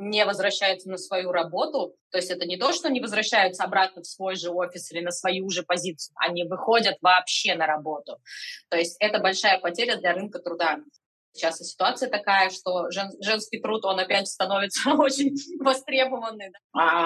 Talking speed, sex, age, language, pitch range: 170 wpm, female, 20-39, Russian, 165-195 Hz